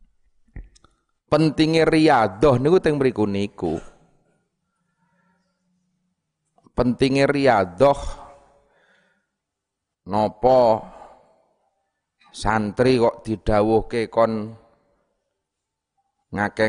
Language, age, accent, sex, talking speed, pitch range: Indonesian, 30-49, native, male, 60 wpm, 100-140 Hz